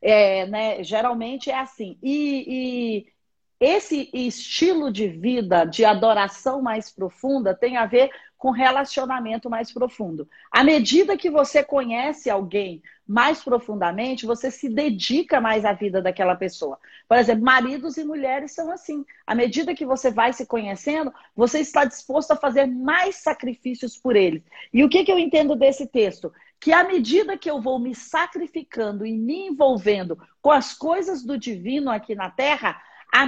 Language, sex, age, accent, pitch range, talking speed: Portuguese, female, 40-59, Brazilian, 230-300 Hz, 160 wpm